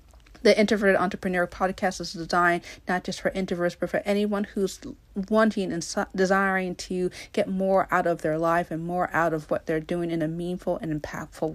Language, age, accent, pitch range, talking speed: English, 40-59, American, 165-190 Hz, 185 wpm